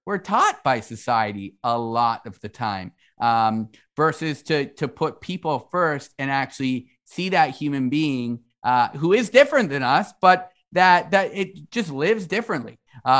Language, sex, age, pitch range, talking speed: English, male, 30-49, 125-165 Hz, 160 wpm